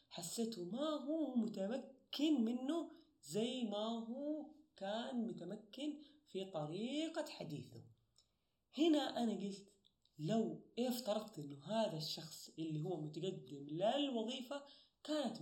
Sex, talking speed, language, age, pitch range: female, 100 wpm, Arabic, 30-49, 160-230 Hz